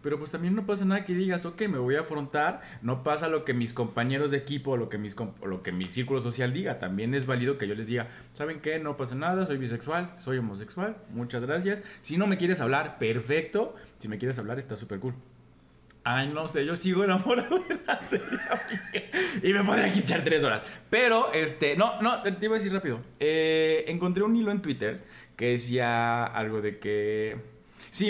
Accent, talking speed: Mexican, 205 wpm